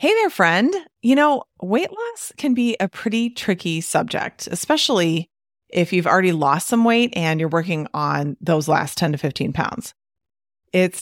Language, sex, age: English, female, 30-49